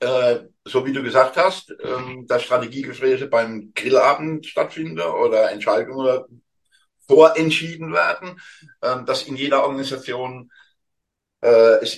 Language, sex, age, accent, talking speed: German, male, 60-79, German, 95 wpm